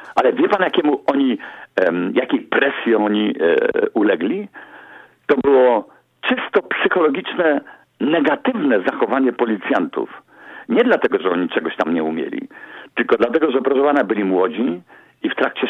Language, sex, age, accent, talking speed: Polish, male, 50-69, native, 130 wpm